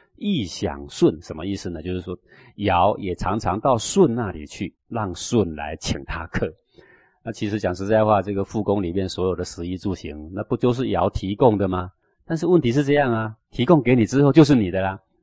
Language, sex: Chinese, male